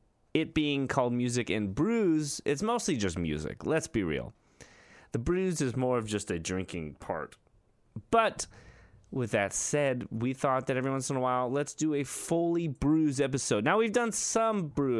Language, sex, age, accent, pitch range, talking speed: English, male, 30-49, American, 105-145 Hz, 180 wpm